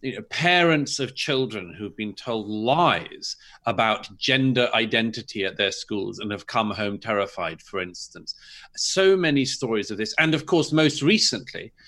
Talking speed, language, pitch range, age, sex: 150 wpm, English, 110-160 Hz, 40-59, male